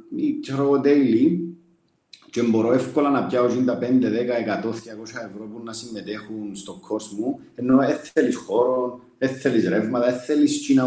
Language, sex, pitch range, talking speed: Greek, male, 110-155 Hz, 145 wpm